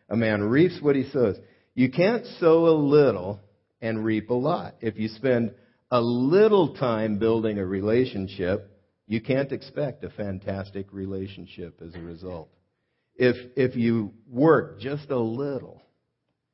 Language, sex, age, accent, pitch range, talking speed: English, male, 50-69, American, 95-120 Hz, 145 wpm